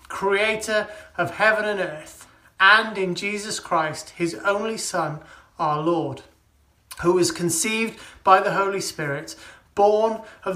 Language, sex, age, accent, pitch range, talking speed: English, male, 30-49, British, 165-210 Hz, 130 wpm